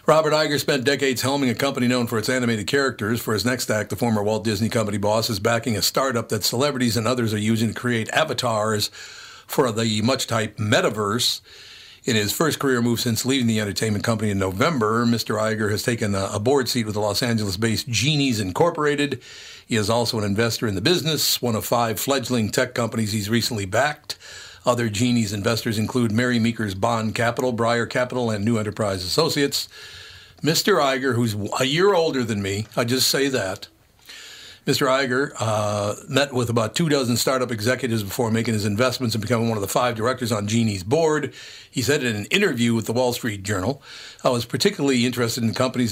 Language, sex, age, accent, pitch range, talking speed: English, male, 50-69, American, 110-130 Hz, 195 wpm